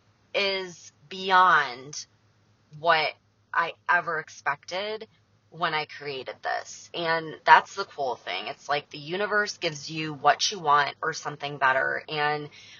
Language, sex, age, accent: English, female, 20-39, American